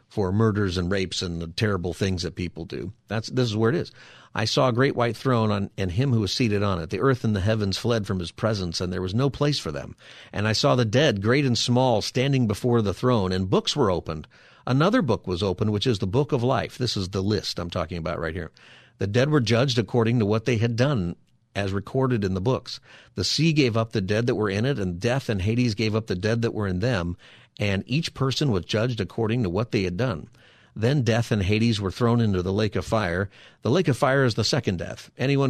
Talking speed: 255 wpm